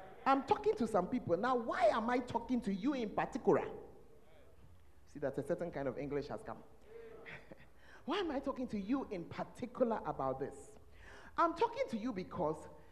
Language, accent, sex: English, Nigerian, male